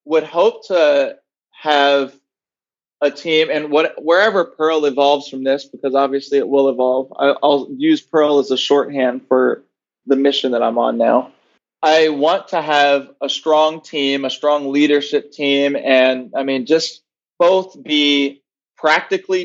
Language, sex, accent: English, male, American